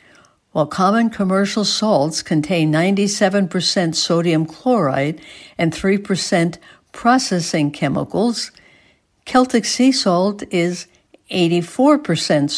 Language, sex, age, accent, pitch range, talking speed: English, female, 60-79, American, 155-200 Hz, 80 wpm